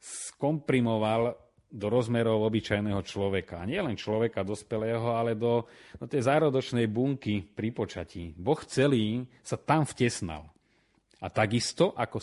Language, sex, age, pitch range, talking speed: Slovak, male, 30-49, 95-115 Hz, 120 wpm